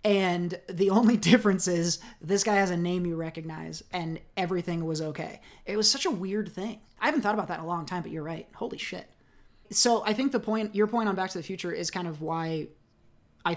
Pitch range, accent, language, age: 160-195 Hz, American, English, 20-39